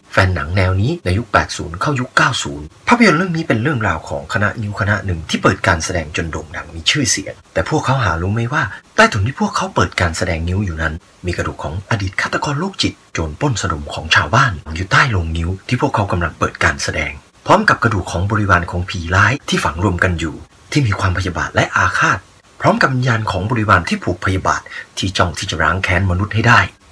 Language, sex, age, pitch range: Thai, male, 30-49, 90-115 Hz